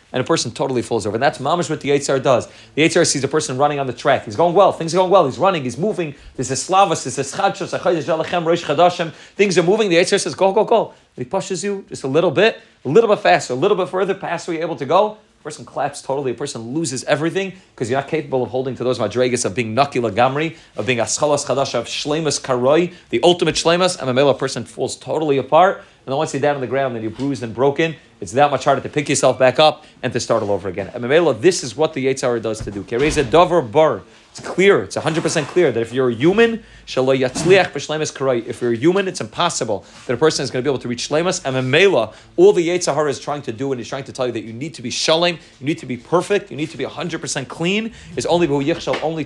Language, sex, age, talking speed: English, male, 30-49, 240 wpm